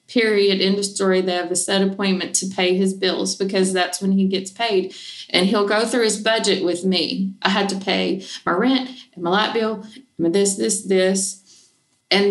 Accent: American